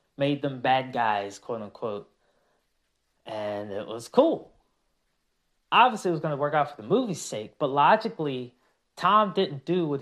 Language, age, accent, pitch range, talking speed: English, 20-39, American, 130-180 Hz, 155 wpm